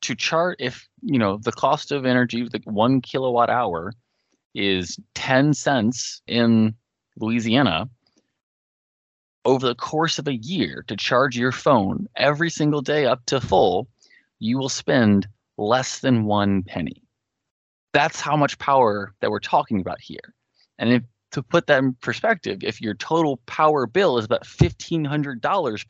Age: 20-39